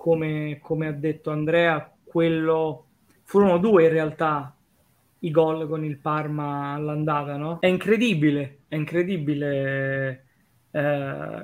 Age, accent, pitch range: 20-39, native, 150-170 Hz